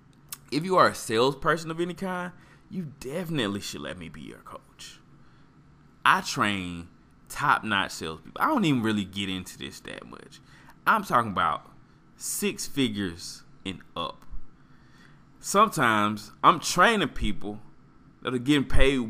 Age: 20-39